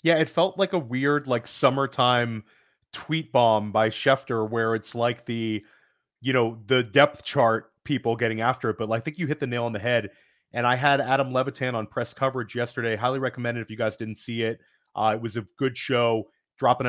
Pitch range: 115-130 Hz